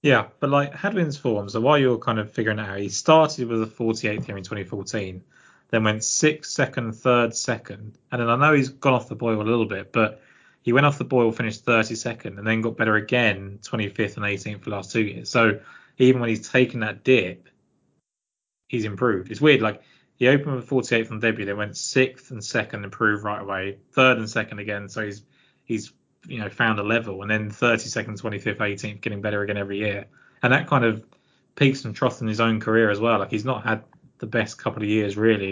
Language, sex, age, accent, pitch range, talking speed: English, male, 20-39, British, 105-120 Hz, 225 wpm